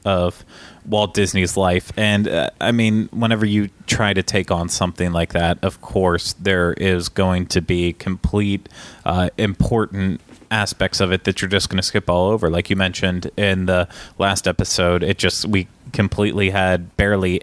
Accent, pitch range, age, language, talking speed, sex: American, 90-105 Hz, 20-39, English, 175 wpm, male